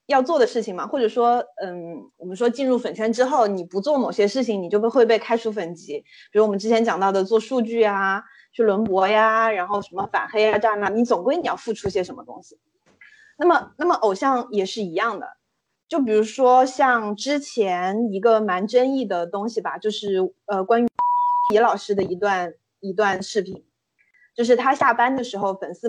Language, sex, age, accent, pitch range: Chinese, female, 20-39, native, 205-255 Hz